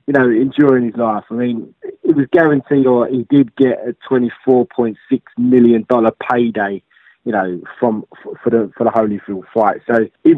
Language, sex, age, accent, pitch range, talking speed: English, male, 20-39, British, 115-140 Hz, 190 wpm